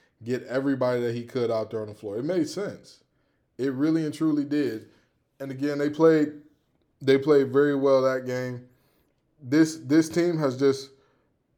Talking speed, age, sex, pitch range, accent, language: 170 wpm, 20-39, male, 120-145 Hz, American, English